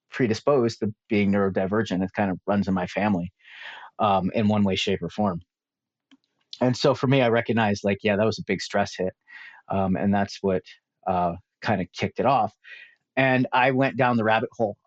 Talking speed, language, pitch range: 195 wpm, English, 105-125 Hz